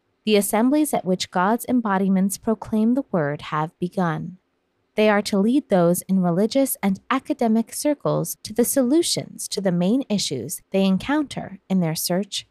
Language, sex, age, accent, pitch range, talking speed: English, female, 20-39, American, 180-245 Hz, 160 wpm